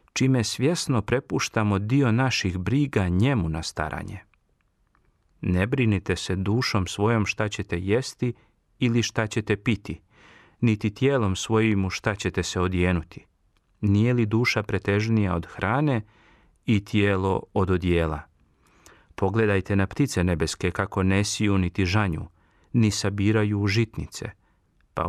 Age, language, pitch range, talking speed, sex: 40-59, Croatian, 95-115 Hz, 120 wpm, male